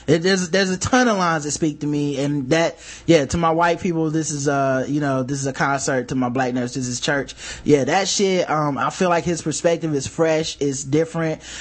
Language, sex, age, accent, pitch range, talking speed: English, male, 20-39, American, 140-170 Hz, 245 wpm